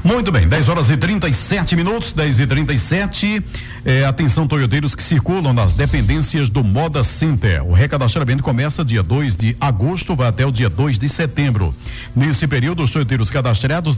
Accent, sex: Brazilian, male